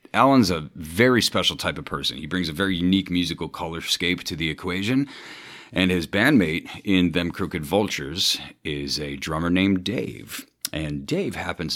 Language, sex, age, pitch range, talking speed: English, male, 40-59, 80-100 Hz, 165 wpm